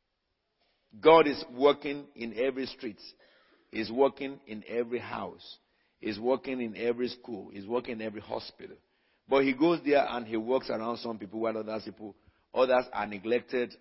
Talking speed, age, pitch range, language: 160 wpm, 50-69, 105-130 Hz, English